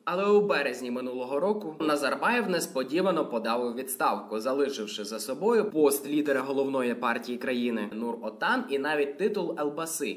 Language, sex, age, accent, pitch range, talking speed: Ukrainian, male, 20-39, native, 125-175 Hz, 135 wpm